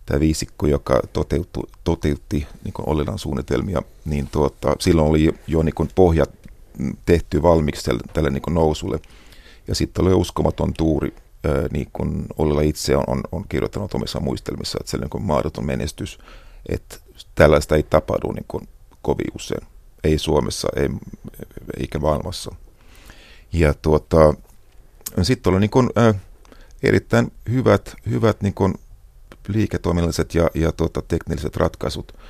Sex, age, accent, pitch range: male, 50-69, native, 75-90 Hz